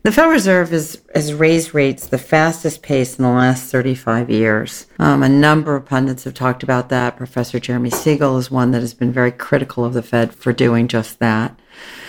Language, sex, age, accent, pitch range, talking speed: English, female, 50-69, American, 125-150 Hz, 200 wpm